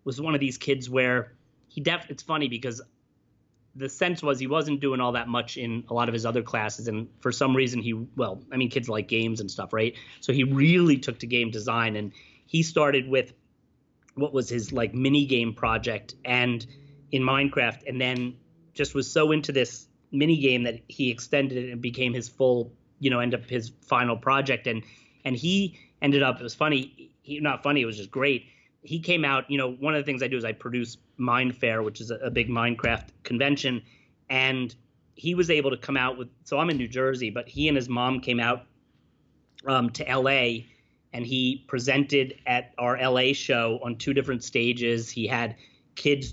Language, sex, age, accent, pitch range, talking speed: English, male, 30-49, American, 120-135 Hz, 205 wpm